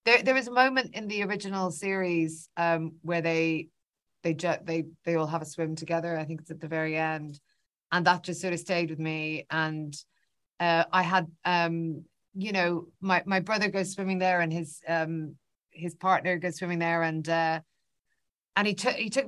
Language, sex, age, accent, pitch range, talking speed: English, female, 30-49, Irish, 160-185 Hz, 195 wpm